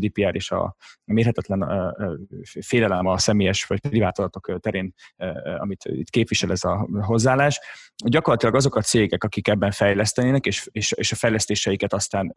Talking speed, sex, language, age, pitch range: 135 wpm, male, Hungarian, 30-49, 100-125 Hz